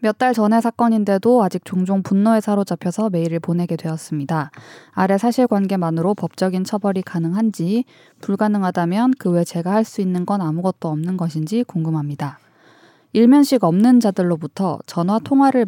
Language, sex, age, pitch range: Korean, female, 20-39, 165-230 Hz